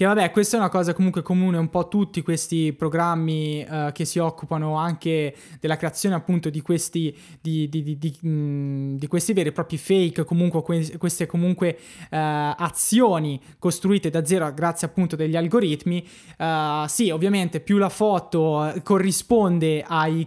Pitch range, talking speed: 160-190 Hz, 135 wpm